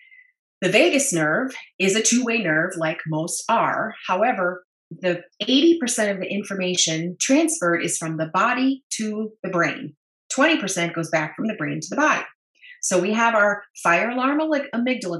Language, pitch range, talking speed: English, 175-240 Hz, 160 wpm